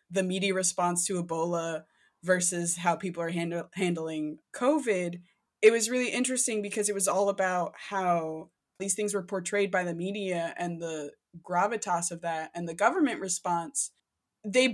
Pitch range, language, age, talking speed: 180-215 Hz, English, 20-39, 155 wpm